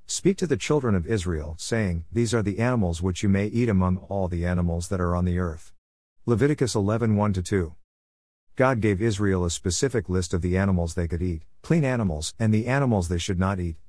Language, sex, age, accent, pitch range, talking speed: English, male, 50-69, American, 85-110 Hz, 205 wpm